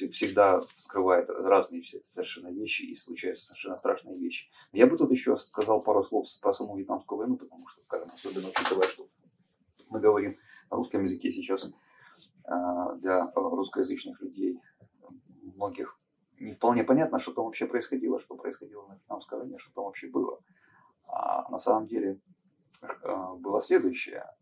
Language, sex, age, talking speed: Russian, male, 30-49, 145 wpm